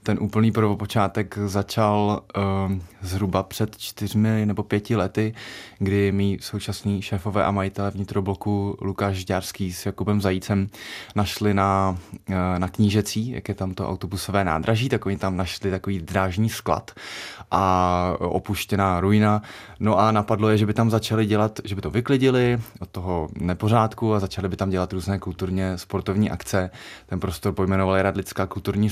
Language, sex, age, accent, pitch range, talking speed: Czech, male, 20-39, native, 95-105 Hz, 155 wpm